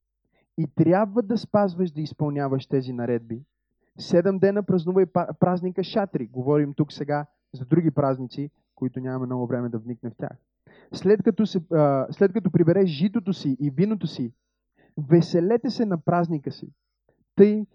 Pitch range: 150-185 Hz